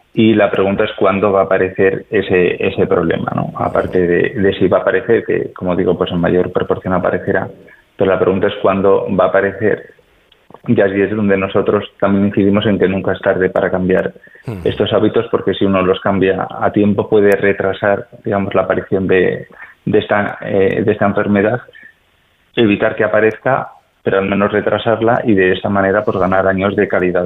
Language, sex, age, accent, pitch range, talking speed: Spanish, male, 20-39, Spanish, 90-100 Hz, 190 wpm